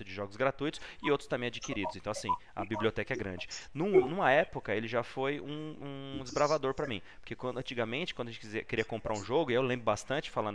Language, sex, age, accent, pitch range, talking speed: Portuguese, male, 30-49, Brazilian, 120-195 Hz, 230 wpm